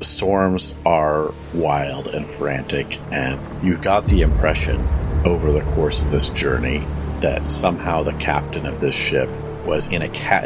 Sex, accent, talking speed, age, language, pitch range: male, American, 155 wpm, 40-59, English, 75-80 Hz